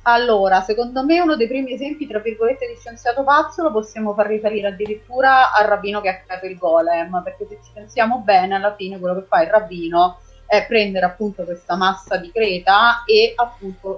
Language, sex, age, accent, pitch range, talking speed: Italian, female, 30-49, native, 190-235 Hz, 195 wpm